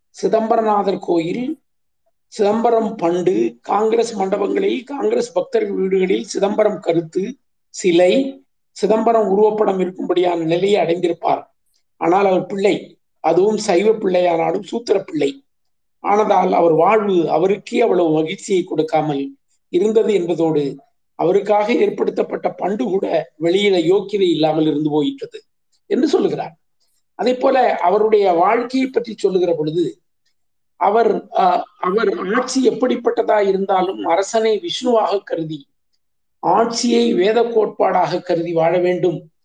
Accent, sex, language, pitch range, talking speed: native, male, Tamil, 175-230 Hz, 100 wpm